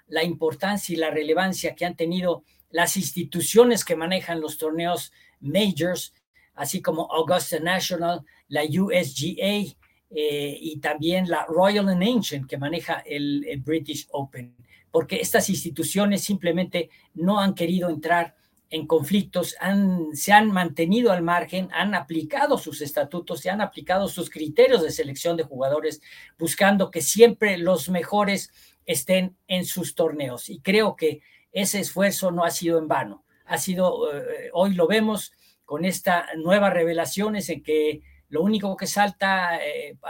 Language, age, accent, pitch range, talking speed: Spanish, 50-69, Mexican, 155-190 Hz, 150 wpm